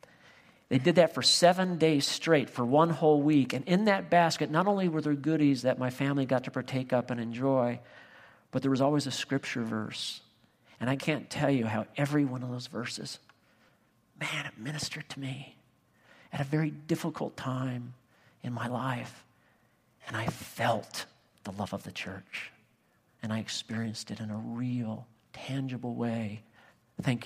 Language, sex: English, male